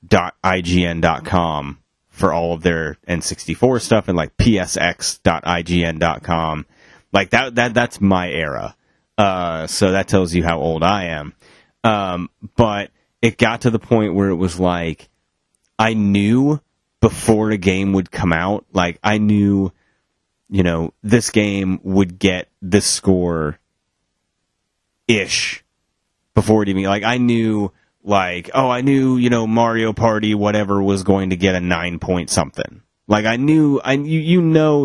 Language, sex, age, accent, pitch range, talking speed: English, male, 30-49, American, 90-110 Hz, 150 wpm